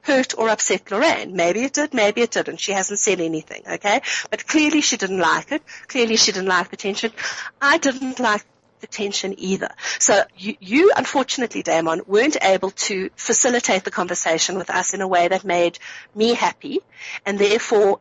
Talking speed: 185 wpm